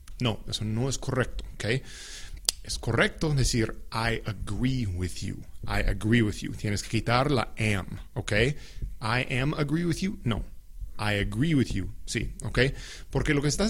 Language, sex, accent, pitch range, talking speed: English, male, Mexican, 105-130 Hz, 160 wpm